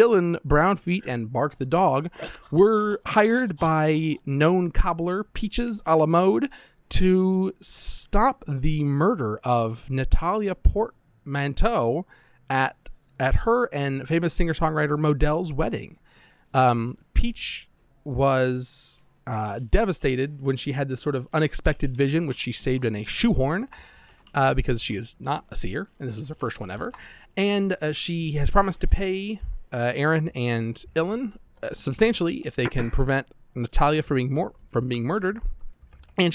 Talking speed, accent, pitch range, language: 145 wpm, American, 130-185 Hz, English